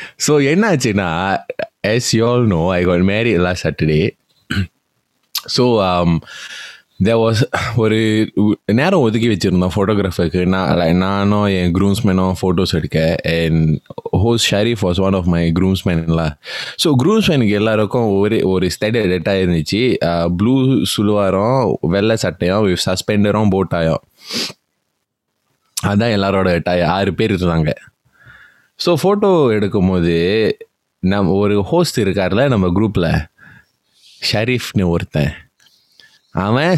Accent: native